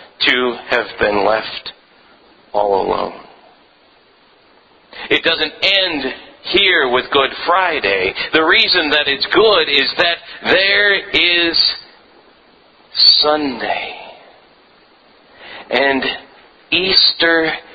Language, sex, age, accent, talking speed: English, male, 40-59, American, 85 wpm